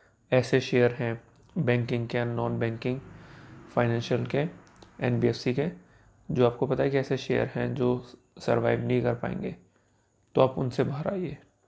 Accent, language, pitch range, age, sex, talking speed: native, Hindi, 120-140 Hz, 30-49, male, 150 wpm